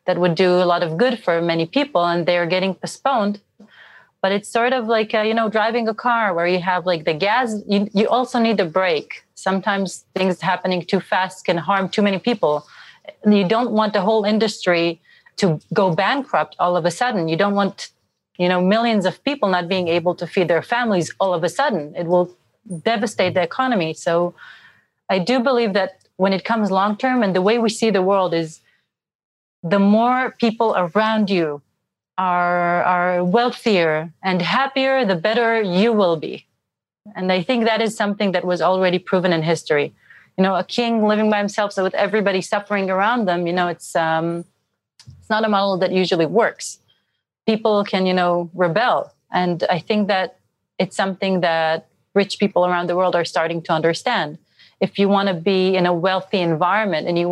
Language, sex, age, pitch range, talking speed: English, female, 30-49, 175-215 Hz, 195 wpm